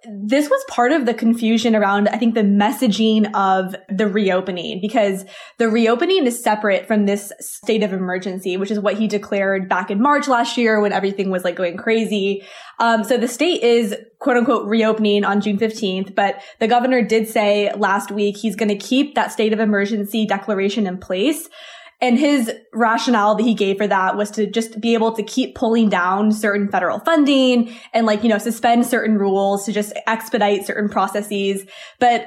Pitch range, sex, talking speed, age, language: 200-235 Hz, female, 190 wpm, 20-39, English